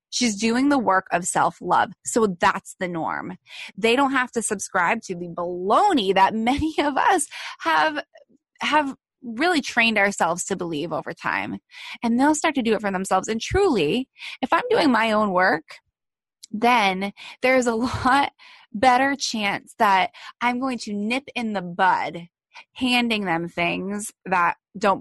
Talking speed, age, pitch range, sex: 160 wpm, 20-39, 185-245 Hz, female